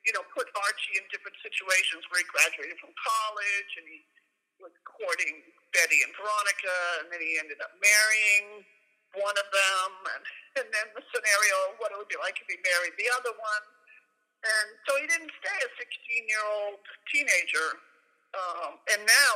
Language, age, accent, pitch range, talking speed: English, 50-69, American, 190-260 Hz, 175 wpm